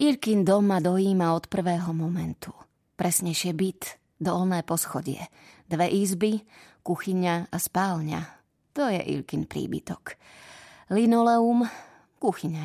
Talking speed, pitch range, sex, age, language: 100 wpm, 165-195 Hz, female, 20-39, Slovak